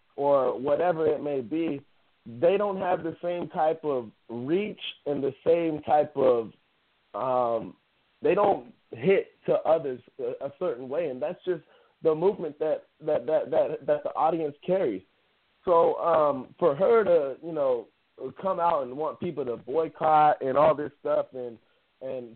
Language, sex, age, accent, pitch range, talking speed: English, male, 20-39, American, 140-175 Hz, 160 wpm